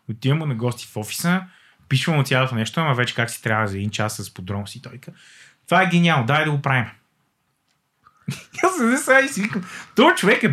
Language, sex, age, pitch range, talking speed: Bulgarian, male, 20-39, 145-220 Hz, 195 wpm